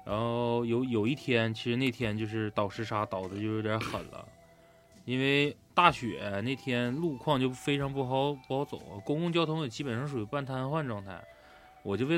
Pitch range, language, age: 110-140 Hz, Chinese, 20-39